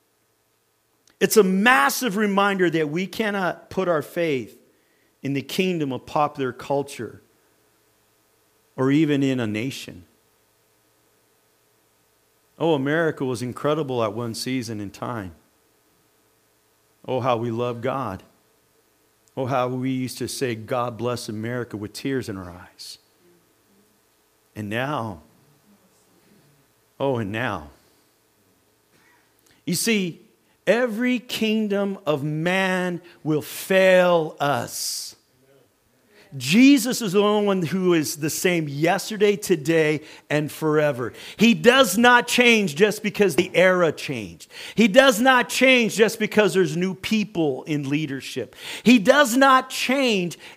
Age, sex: 50-69, male